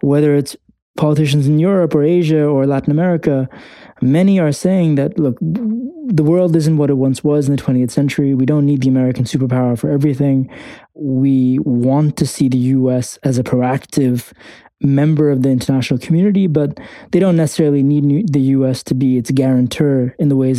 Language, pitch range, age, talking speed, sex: English, 130-160 Hz, 20-39, 180 wpm, male